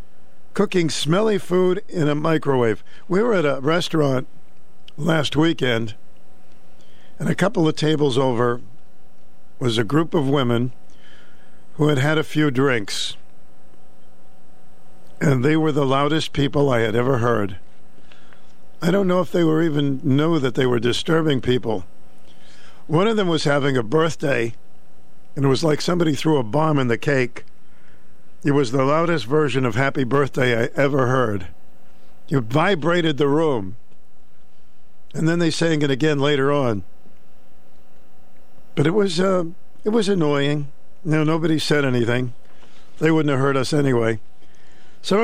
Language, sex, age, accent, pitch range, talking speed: English, male, 50-69, American, 120-160 Hz, 150 wpm